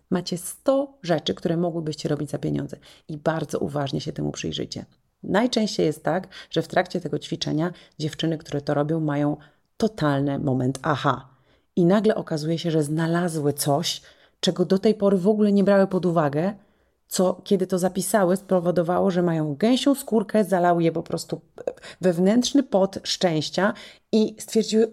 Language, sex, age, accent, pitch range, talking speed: Polish, female, 30-49, native, 150-210 Hz, 155 wpm